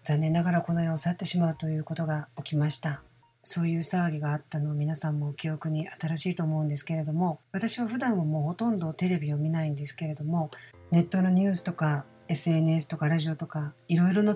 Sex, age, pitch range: female, 50-69, 155-185 Hz